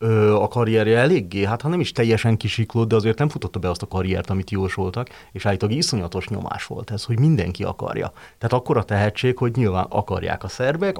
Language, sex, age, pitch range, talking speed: Hungarian, male, 30-49, 100-120 Hz, 205 wpm